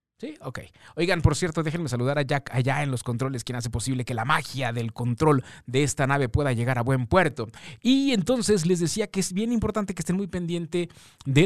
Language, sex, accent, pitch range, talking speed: Spanish, male, Mexican, 130-165 Hz, 220 wpm